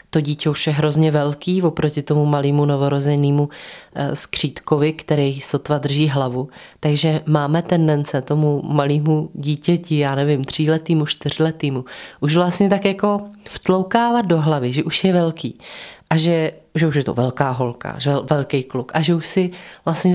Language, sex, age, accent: Czech, female, 20-39, native